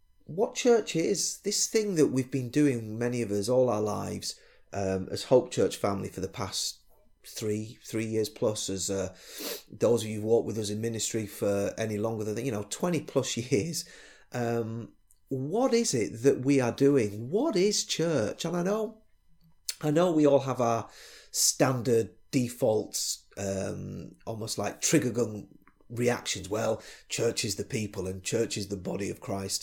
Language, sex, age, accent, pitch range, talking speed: English, male, 30-49, British, 105-150 Hz, 175 wpm